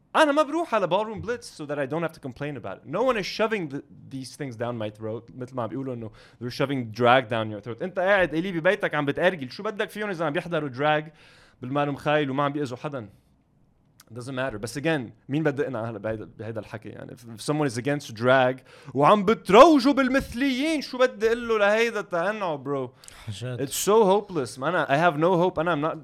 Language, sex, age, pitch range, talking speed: English, male, 20-39, 130-175 Hz, 110 wpm